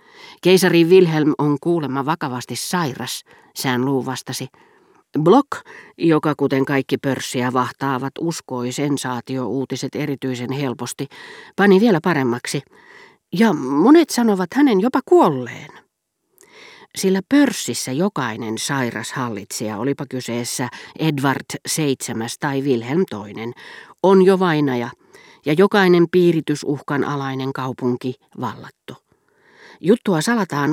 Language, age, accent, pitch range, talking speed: Finnish, 40-59, native, 130-170 Hz, 95 wpm